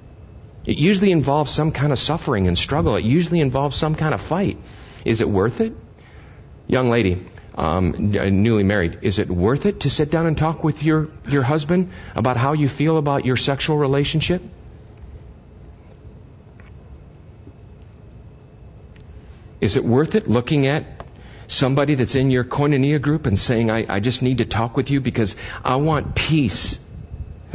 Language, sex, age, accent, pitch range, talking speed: English, male, 40-59, American, 100-150 Hz, 155 wpm